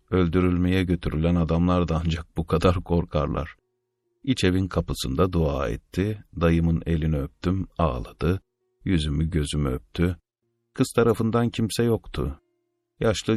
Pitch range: 80-115 Hz